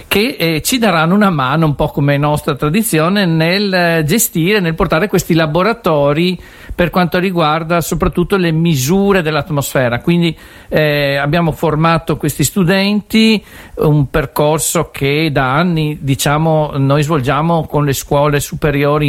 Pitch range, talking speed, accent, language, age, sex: 140-180 Hz, 135 wpm, native, Italian, 50-69, male